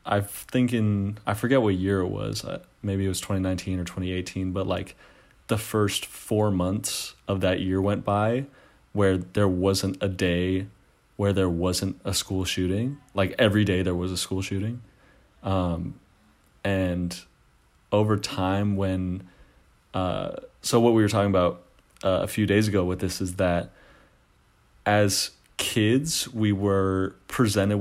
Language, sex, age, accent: English, male, 30-49, American